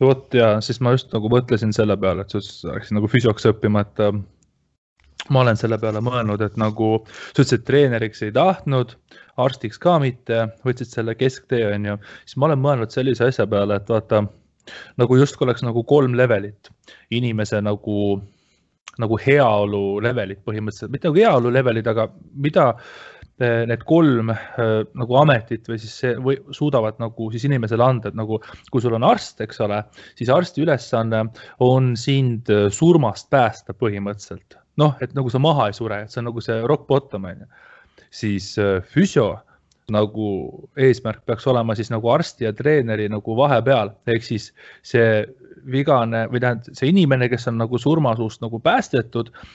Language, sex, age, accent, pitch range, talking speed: English, male, 20-39, Finnish, 110-130 Hz, 155 wpm